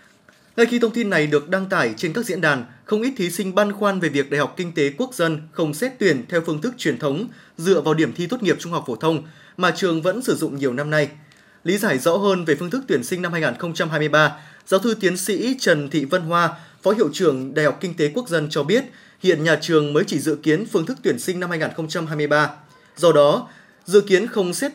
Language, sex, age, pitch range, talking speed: Vietnamese, male, 20-39, 155-205 Hz, 245 wpm